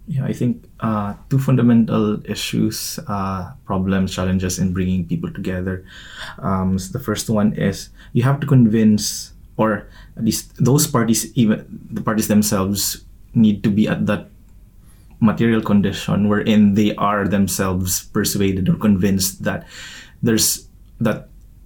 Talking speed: 135 wpm